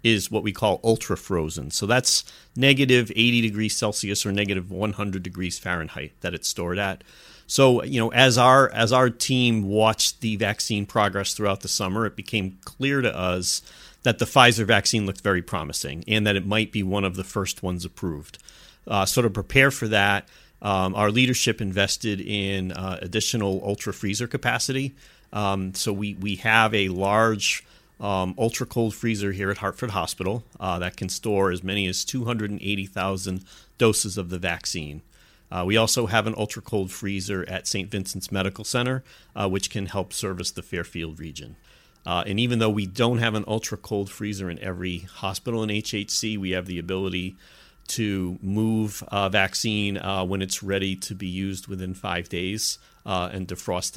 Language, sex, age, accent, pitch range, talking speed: English, male, 40-59, American, 95-110 Hz, 170 wpm